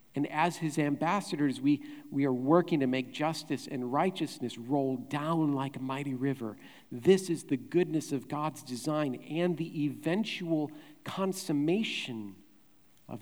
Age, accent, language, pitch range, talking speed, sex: 50-69, American, English, 140-180 Hz, 140 wpm, male